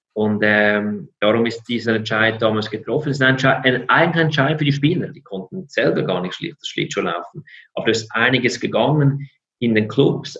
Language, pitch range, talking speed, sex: German, 110-135 Hz, 190 wpm, male